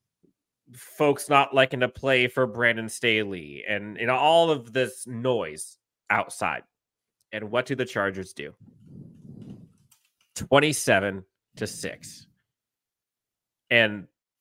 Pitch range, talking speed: 105-145 Hz, 105 wpm